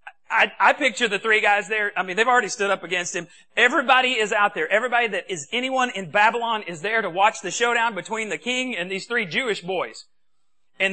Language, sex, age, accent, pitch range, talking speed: English, male, 40-59, American, 185-255 Hz, 220 wpm